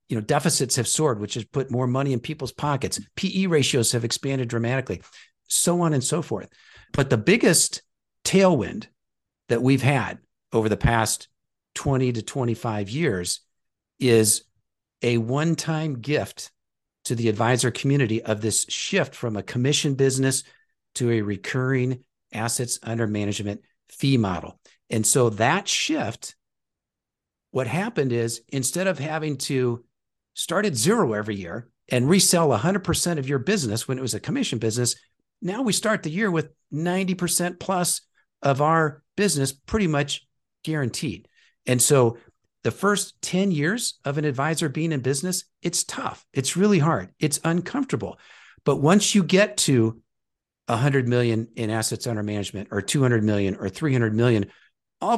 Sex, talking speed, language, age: male, 150 wpm, English, 50-69